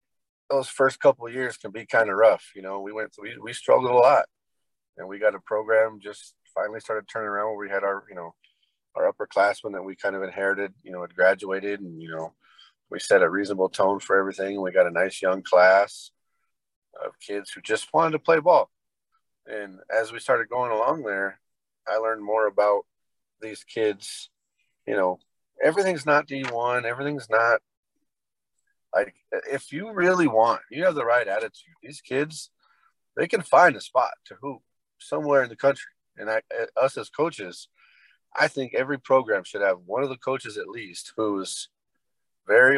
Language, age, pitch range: English, 30-49, 100-145 Hz